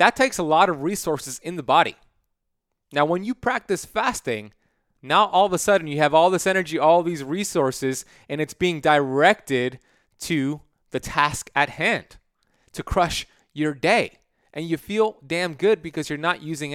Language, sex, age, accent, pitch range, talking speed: English, male, 30-49, American, 140-180 Hz, 175 wpm